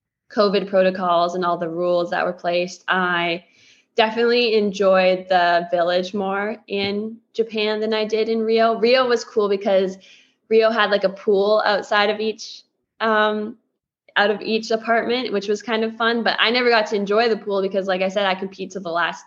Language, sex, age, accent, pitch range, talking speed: English, female, 20-39, American, 180-215 Hz, 190 wpm